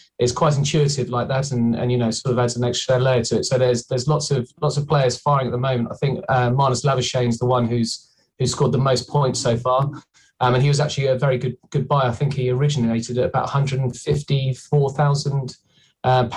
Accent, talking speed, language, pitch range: British, 225 wpm, English, 125-140 Hz